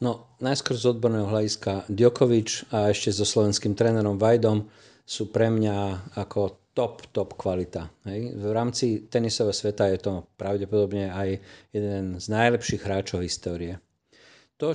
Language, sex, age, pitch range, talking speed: Slovak, male, 40-59, 95-110 Hz, 140 wpm